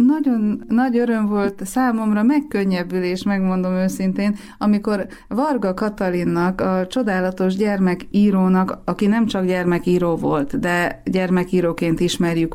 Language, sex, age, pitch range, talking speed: Hungarian, female, 30-49, 165-190 Hz, 105 wpm